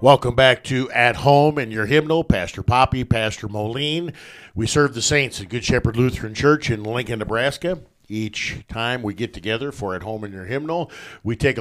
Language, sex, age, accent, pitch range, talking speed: English, male, 50-69, American, 105-125 Hz, 190 wpm